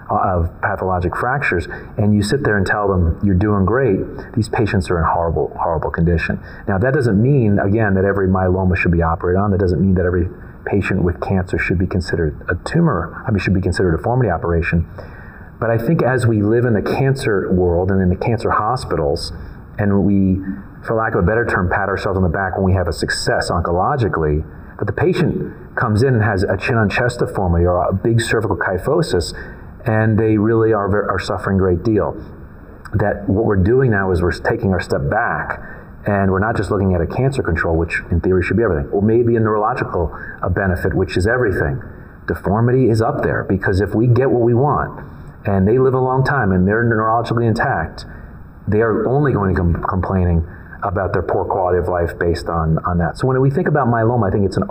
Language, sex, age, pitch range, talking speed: English, male, 40-59, 90-115 Hz, 215 wpm